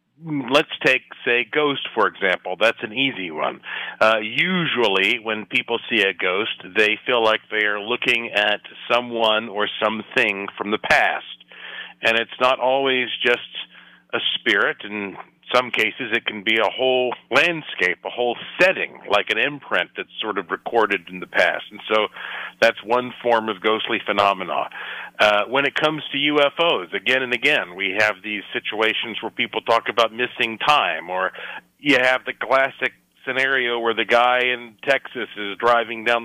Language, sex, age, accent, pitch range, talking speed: English, male, 50-69, American, 110-140 Hz, 165 wpm